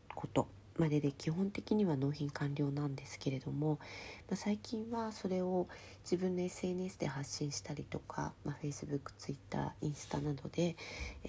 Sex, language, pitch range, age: female, Japanese, 120-180 Hz, 40-59